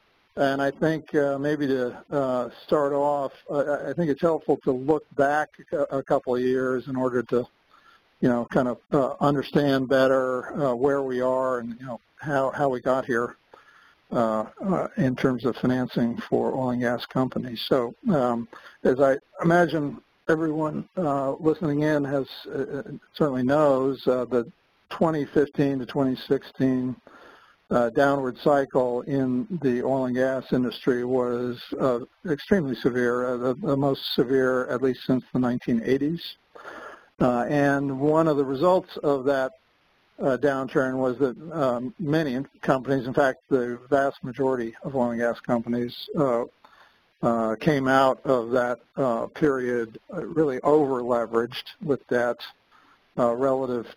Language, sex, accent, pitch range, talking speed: English, male, American, 125-145 Hz, 135 wpm